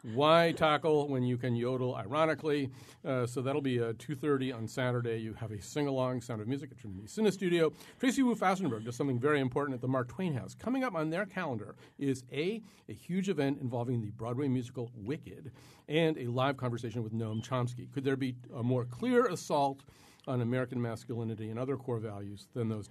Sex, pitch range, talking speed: male, 120-150 Hz, 200 wpm